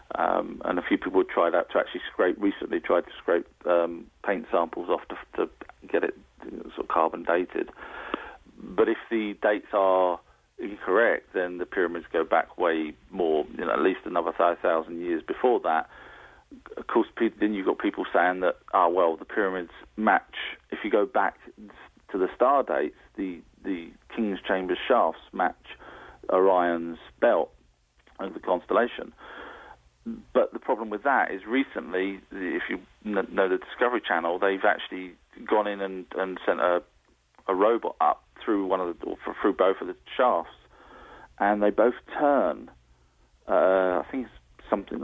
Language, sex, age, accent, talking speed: English, male, 40-59, British, 170 wpm